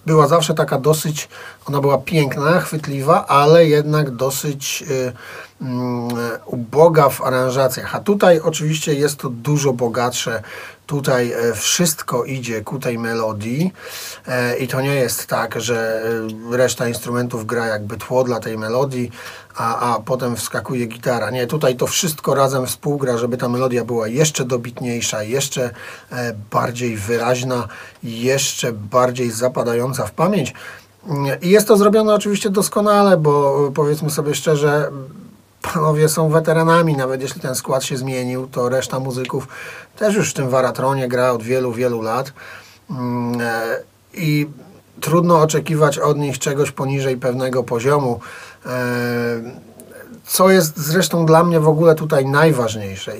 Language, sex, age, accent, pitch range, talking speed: Polish, male, 40-59, native, 125-155 Hz, 130 wpm